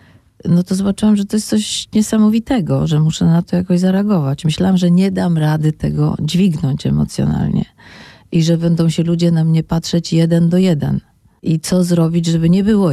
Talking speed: 180 wpm